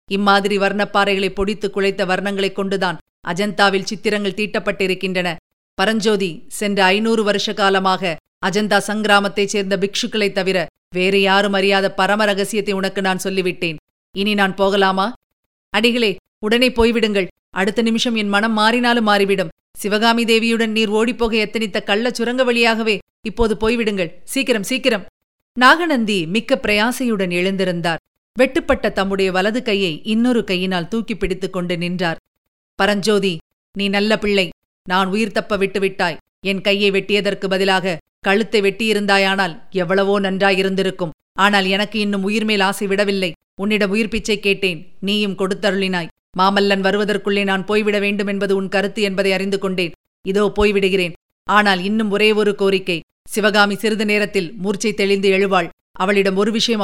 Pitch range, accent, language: 190-215 Hz, native, Tamil